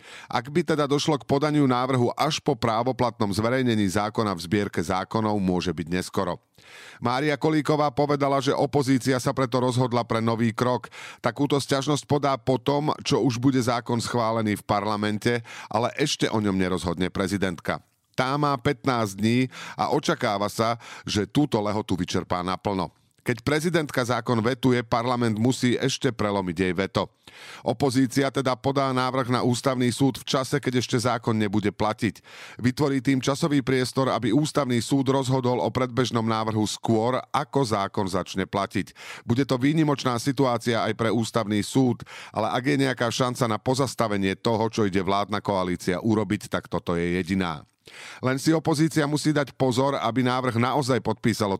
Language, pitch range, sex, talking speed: Slovak, 105-130 Hz, male, 155 wpm